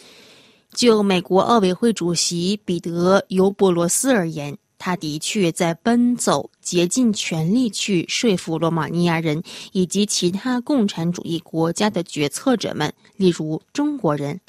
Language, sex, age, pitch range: Chinese, female, 20-39, 170-220 Hz